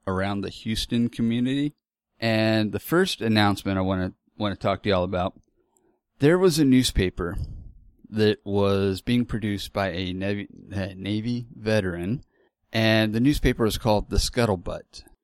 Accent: American